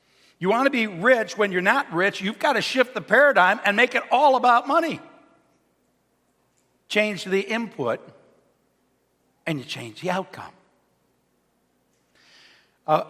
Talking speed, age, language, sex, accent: 135 wpm, 60-79, English, male, American